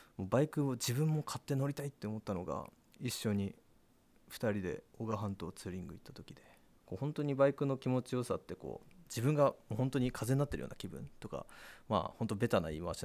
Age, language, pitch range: 20-39, Japanese, 100-135 Hz